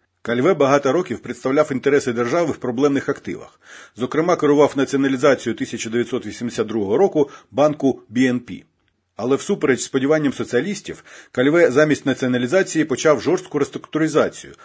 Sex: male